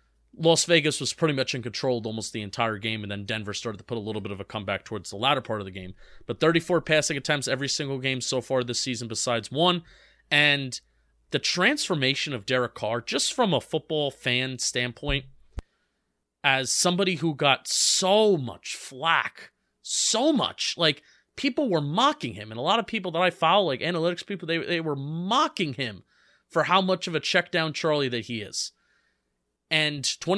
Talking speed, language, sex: 190 wpm, English, male